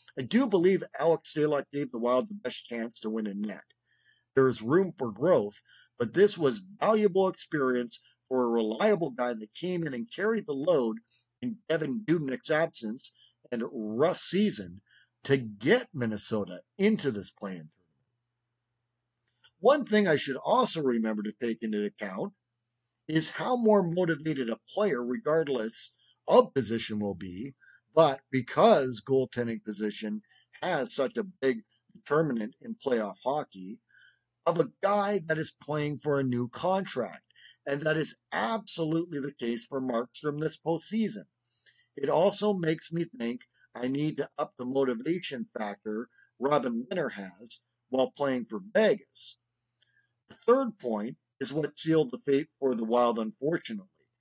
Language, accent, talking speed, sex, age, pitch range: English, American, 150 wpm, male, 50-69, 120-165 Hz